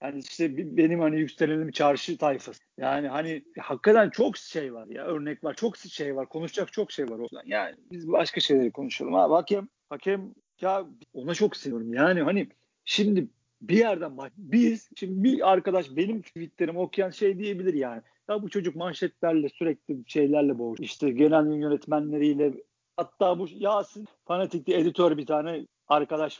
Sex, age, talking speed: male, 50-69, 160 wpm